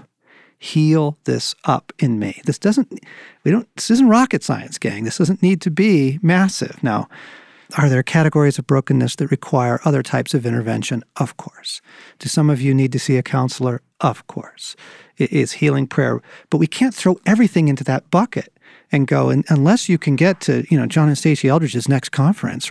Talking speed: 195 wpm